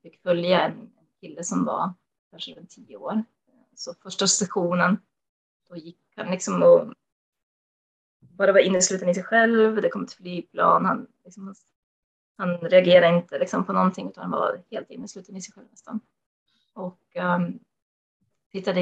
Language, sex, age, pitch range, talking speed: Swedish, female, 20-39, 180-220 Hz, 150 wpm